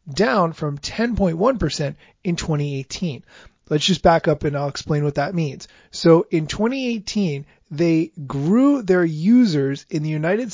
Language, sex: English, male